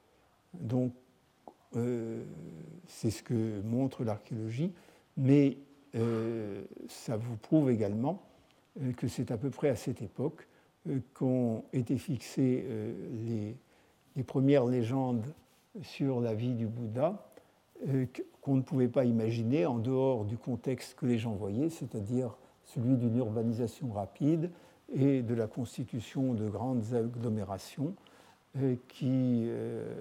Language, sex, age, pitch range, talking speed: French, male, 60-79, 115-135 Hz, 120 wpm